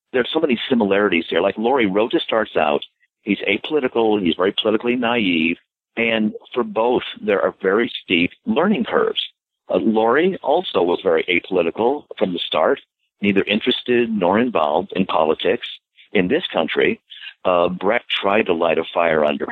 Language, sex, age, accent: English, male, 50-69, American